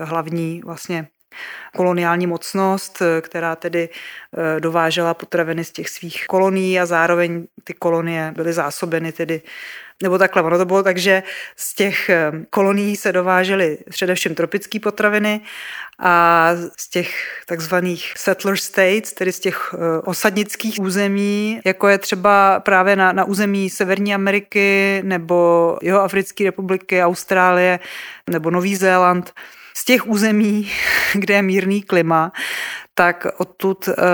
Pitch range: 170-195 Hz